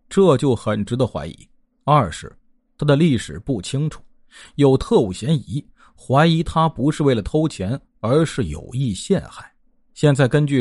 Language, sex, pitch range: Chinese, male, 125-185 Hz